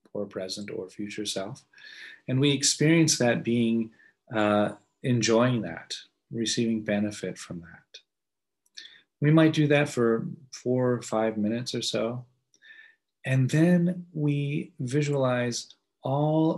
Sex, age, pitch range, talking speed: male, 30-49, 105-130 Hz, 120 wpm